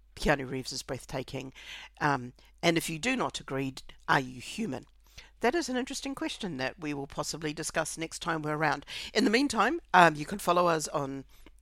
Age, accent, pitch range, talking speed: 50-69, Australian, 145-185 Hz, 190 wpm